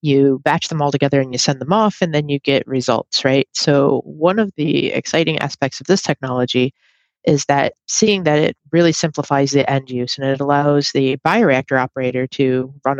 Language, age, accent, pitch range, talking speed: English, 30-49, American, 130-155 Hz, 200 wpm